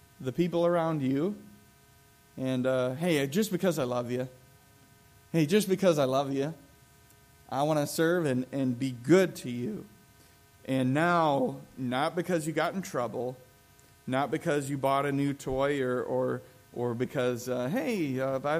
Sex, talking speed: male, 160 wpm